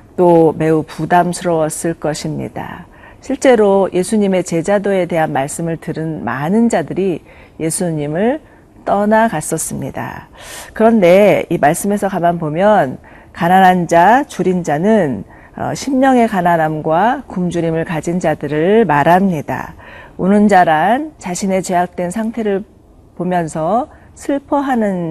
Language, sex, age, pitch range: Korean, female, 40-59, 165-210 Hz